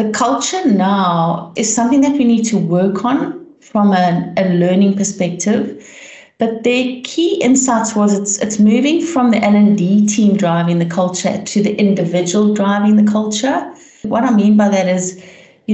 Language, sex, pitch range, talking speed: English, female, 170-210 Hz, 170 wpm